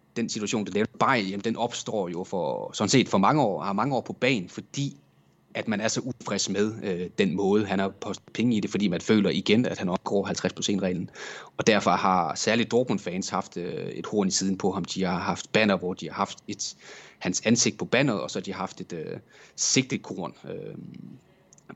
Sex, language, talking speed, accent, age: male, English, 220 wpm, Danish, 30-49